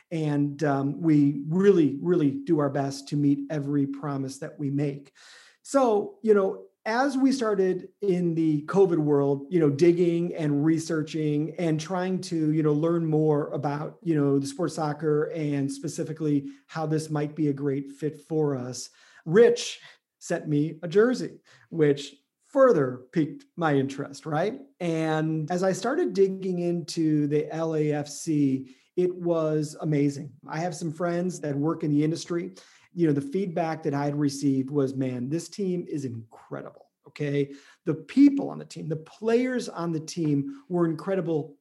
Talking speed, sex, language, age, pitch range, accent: 160 wpm, male, English, 40-59, 145-180 Hz, American